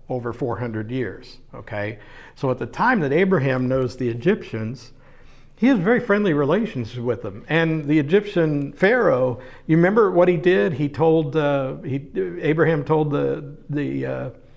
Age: 60-79